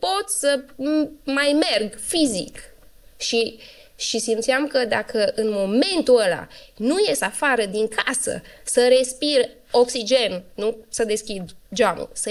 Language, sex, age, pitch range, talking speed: Romanian, female, 20-39, 235-310 Hz, 125 wpm